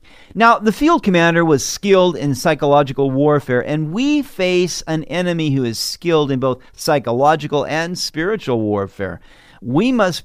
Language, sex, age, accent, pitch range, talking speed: English, male, 50-69, American, 130-200 Hz, 145 wpm